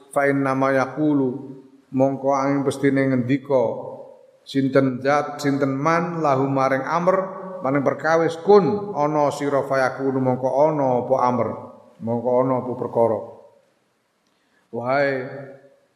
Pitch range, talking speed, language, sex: 125-150 Hz, 105 wpm, Indonesian, male